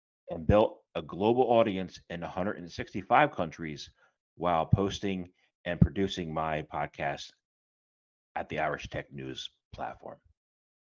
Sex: male